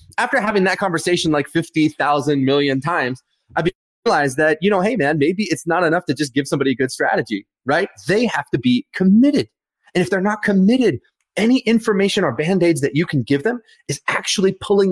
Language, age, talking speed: English, 30-49, 195 wpm